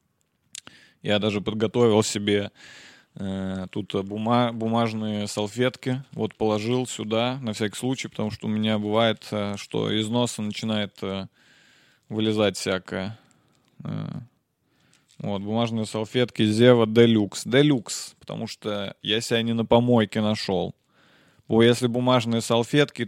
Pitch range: 105-120 Hz